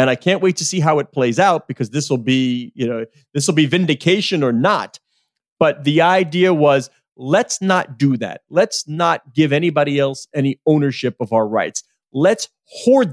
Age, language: 30-49, English